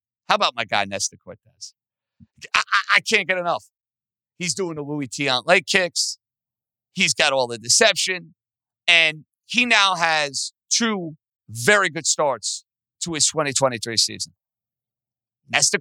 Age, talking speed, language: 50-69, 140 wpm, English